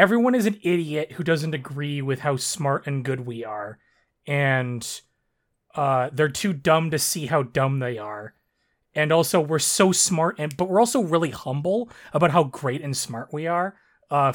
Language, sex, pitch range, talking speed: English, male, 135-175 Hz, 185 wpm